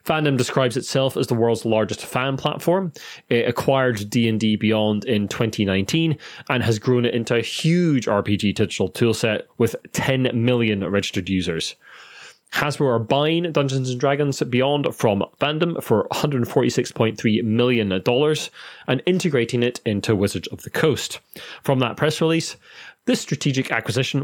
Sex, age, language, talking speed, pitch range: male, 30-49, English, 140 wpm, 110-140 Hz